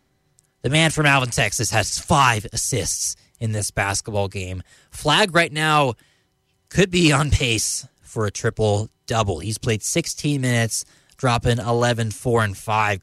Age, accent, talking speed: 20-39, American, 145 wpm